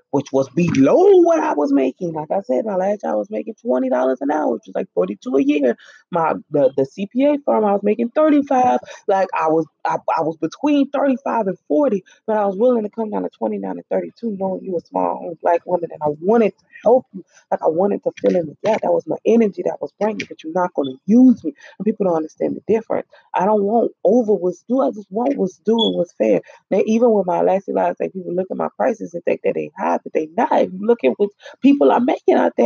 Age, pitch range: 20-39, 150-230 Hz